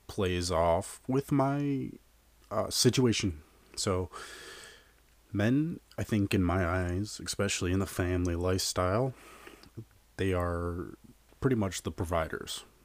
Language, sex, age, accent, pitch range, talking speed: English, male, 30-49, American, 85-95 Hz, 110 wpm